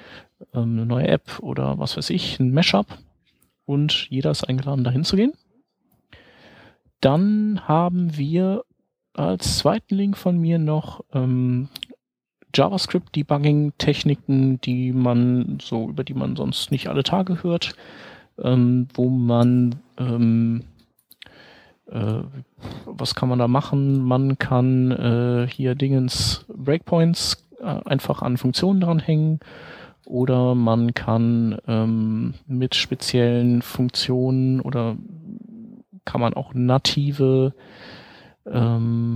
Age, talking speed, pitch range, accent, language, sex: 40-59, 110 wpm, 120-150 Hz, German, German, male